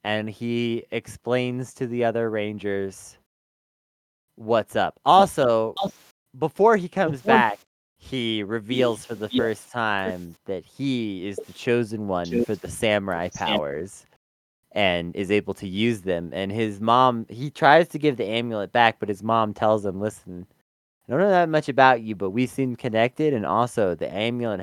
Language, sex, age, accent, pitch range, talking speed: English, male, 20-39, American, 105-140 Hz, 165 wpm